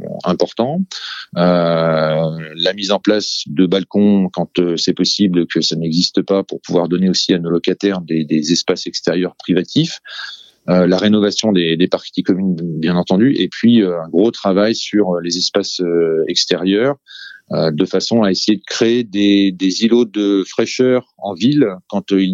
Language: French